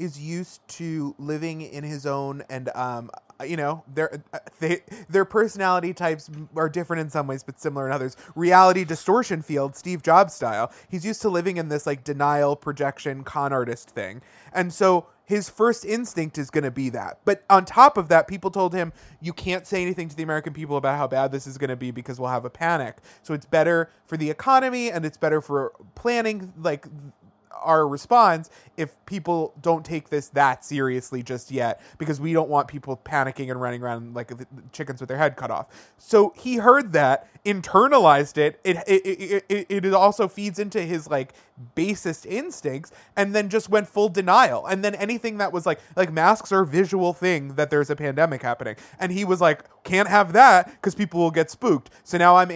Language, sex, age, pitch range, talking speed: English, male, 20-39, 145-195 Hz, 200 wpm